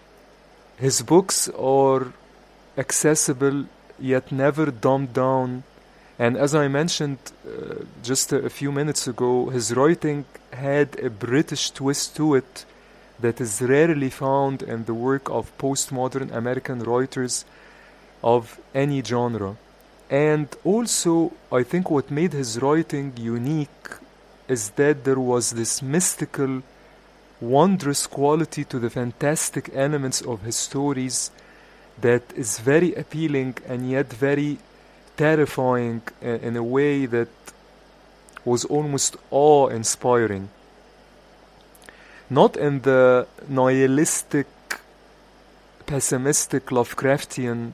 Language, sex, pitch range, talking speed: English, male, 125-145 Hz, 110 wpm